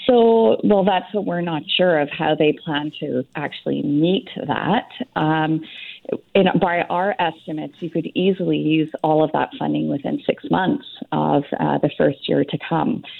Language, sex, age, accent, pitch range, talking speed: English, female, 30-49, American, 150-185 Hz, 175 wpm